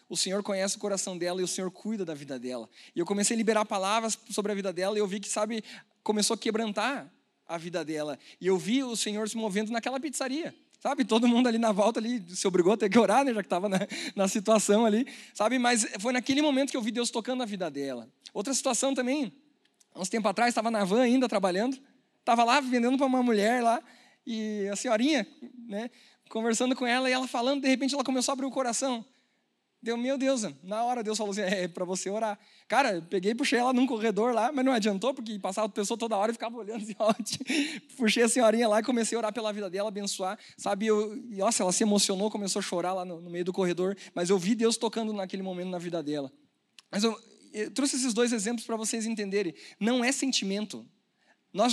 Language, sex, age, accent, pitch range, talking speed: Portuguese, male, 20-39, Brazilian, 200-245 Hz, 235 wpm